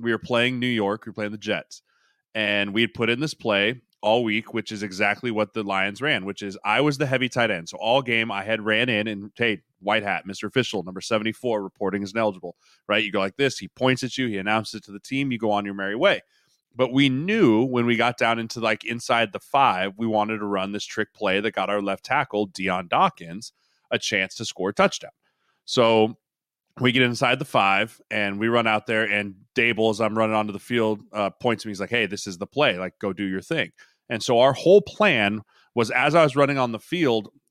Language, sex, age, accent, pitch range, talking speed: English, male, 30-49, American, 105-130 Hz, 245 wpm